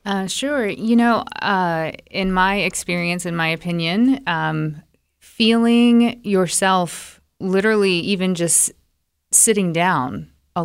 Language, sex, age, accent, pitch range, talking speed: English, female, 30-49, American, 150-175 Hz, 100 wpm